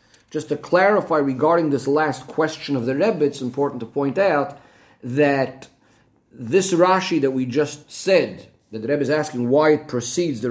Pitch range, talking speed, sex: 125-165 Hz, 175 wpm, male